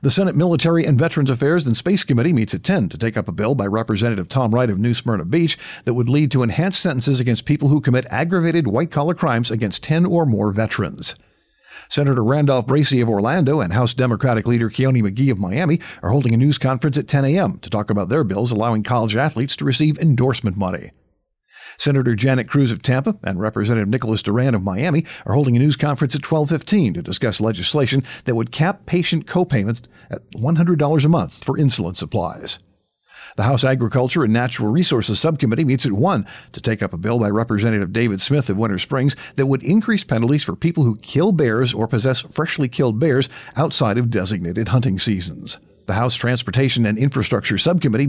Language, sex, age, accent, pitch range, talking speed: English, male, 50-69, American, 115-150 Hz, 195 wpm